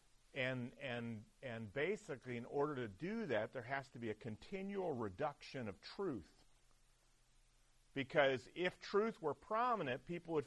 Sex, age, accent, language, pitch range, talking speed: male, 50-69, American, English, 90-130 Hz, 145 wpm